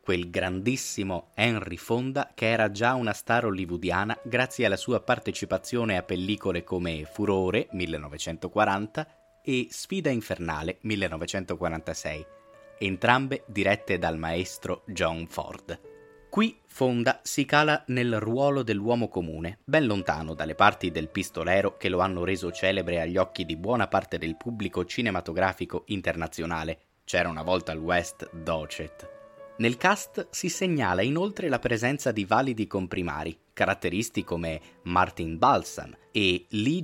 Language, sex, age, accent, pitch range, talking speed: Italian, male, 20-39, native, 90-130 Hz, 130 wpm